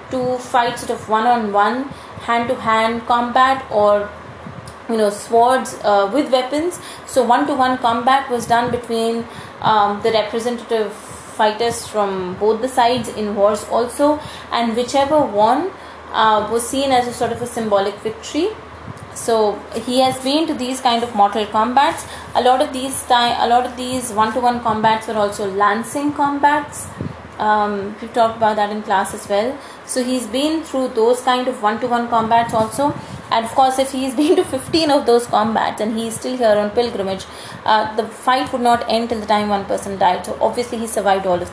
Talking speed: 190 wpm